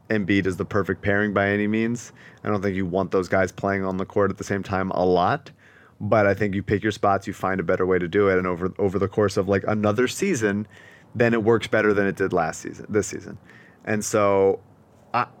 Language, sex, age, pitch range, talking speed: English, male, 30-49, 90-115 Hz, 245 wpm